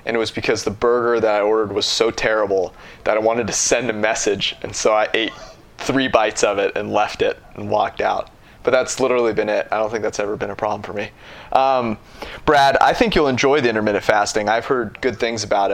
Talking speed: 235 wpm